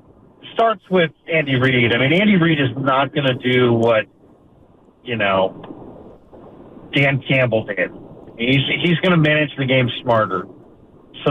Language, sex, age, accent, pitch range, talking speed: English, male, 50-69, American, 130-170 Hz, 150 wpm